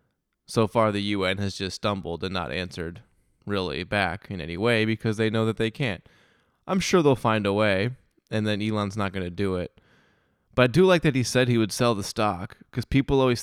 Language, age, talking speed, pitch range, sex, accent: English, 20-39, 225 wpm, 95-115 Hz, male, American